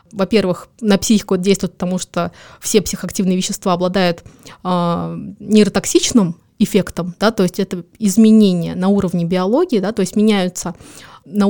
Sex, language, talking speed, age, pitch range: female, Russian, 120 wpm, 20-39, 185-215 Hz